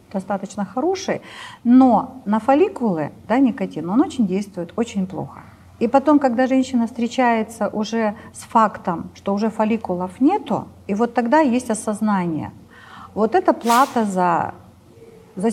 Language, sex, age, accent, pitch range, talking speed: Russian, female, 50-69, native, 190-255 Hz, 130 wpm